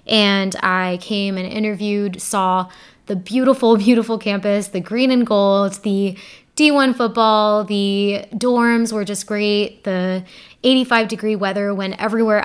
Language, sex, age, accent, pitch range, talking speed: English, female, 20-39, American, 190-220 Hz, 135 wpm